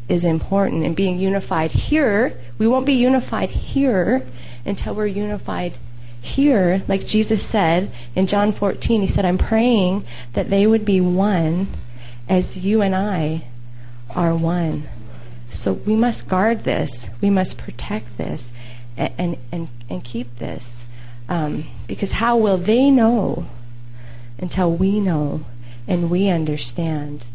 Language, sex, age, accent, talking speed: English, female, 30-49, American, 145 wpm